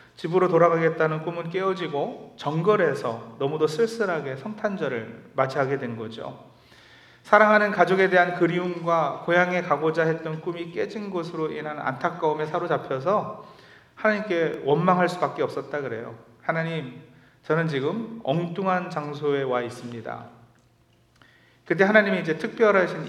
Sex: male